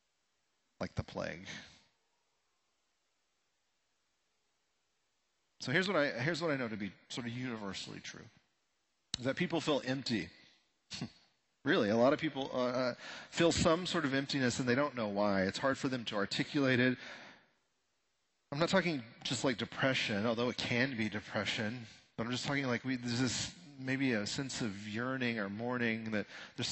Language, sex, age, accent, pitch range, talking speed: English, male, 40-59, American, 115-135 Hz, 175 wpm